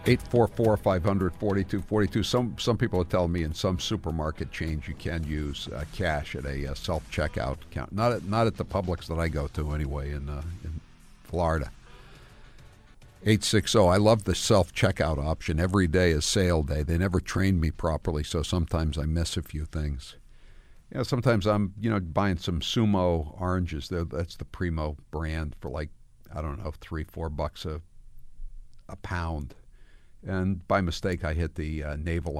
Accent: American